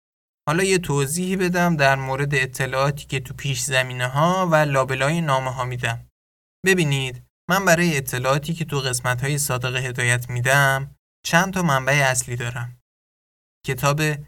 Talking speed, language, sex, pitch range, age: 145 wpm, Persian, male, 125-140 Hz, 20-39